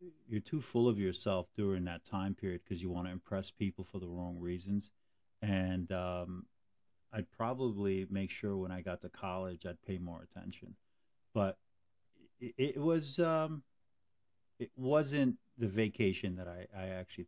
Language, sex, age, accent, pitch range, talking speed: English, male, 50-69, American, 90-105 Hz, 165 wpm